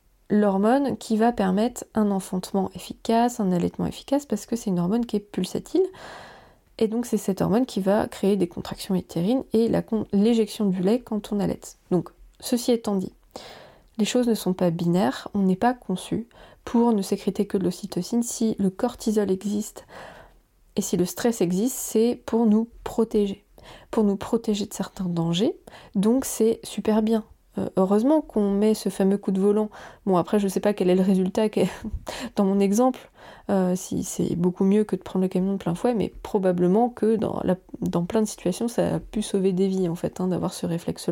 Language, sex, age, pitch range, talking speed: French, female, 20-39, 190-230 Hz, 195 wpm